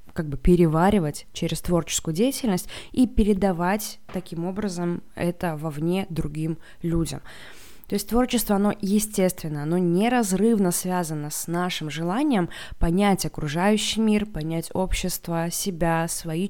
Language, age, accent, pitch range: Russian, 20-39, native, 165-200 Hz